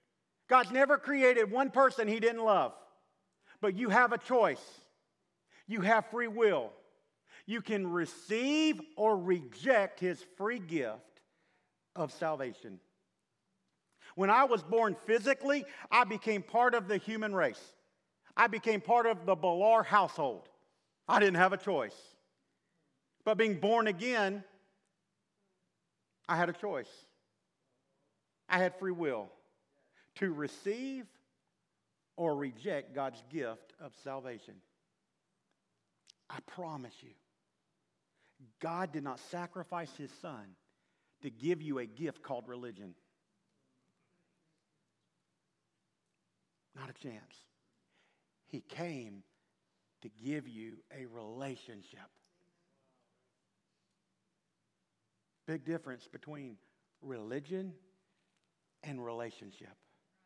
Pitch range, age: 145-220 Hz, 50-69